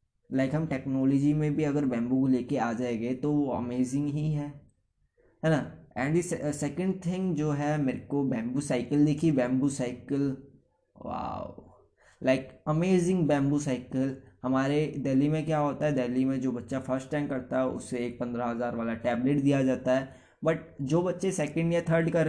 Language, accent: Hindi, native